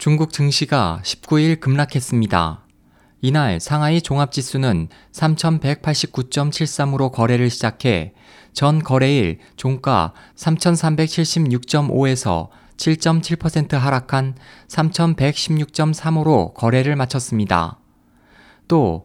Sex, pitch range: male, 125-155 Hz